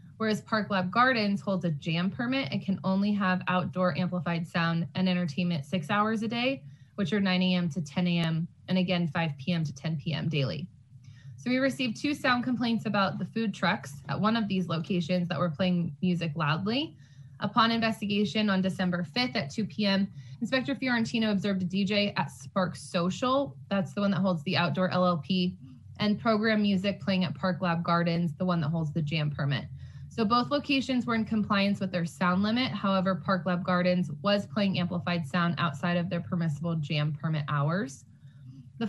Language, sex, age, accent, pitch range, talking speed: English, female, 20-39, American, 170-205 Hz, 185 wpm